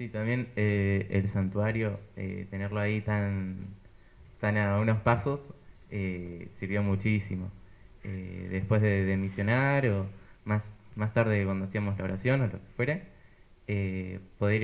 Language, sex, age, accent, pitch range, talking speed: Spanish, male, 20-39, Argentinian, 95-110 Hz, 145 wpm